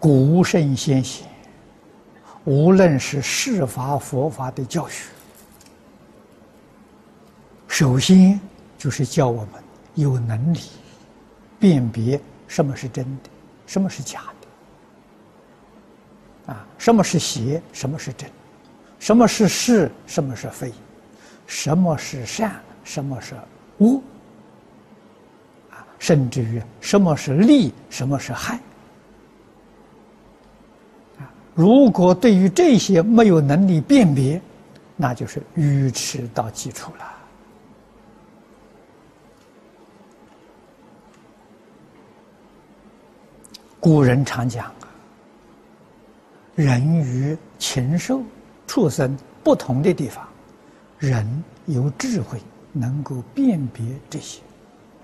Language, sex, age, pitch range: Chinese, male, 60-79, 130-180 Hz